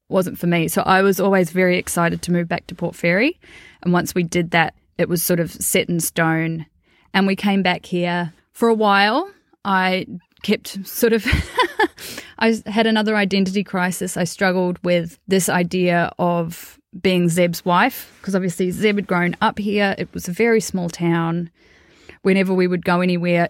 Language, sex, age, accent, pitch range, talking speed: English, female, 20-39, Australian, 175-210 Hz, 180 wpm